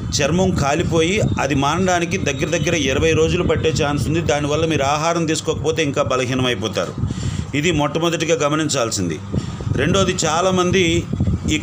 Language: Telugu